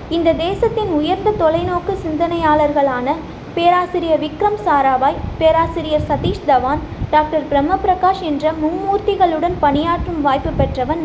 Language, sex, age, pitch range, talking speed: Tamil, female, 20-39, 295-360 Hz, 105 wpm